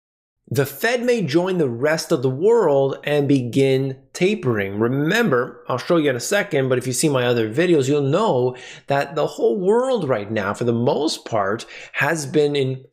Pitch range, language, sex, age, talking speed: 125-165 Hz, English, male, 20-39, 190 wpm